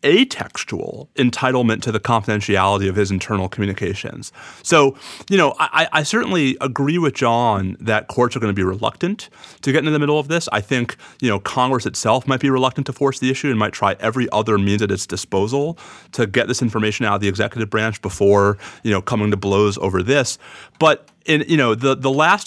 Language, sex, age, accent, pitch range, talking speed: English, male, 30-49, American, 110-140 Hz, 210 wpm